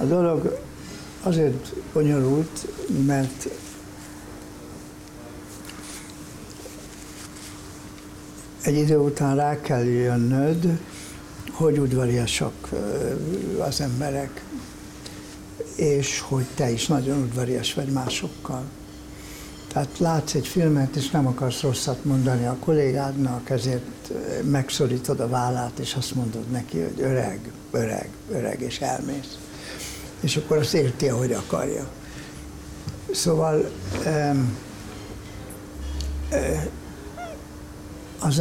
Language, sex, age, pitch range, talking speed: Hungarian, male, 60-79, 120-145 Hz, 85 wpm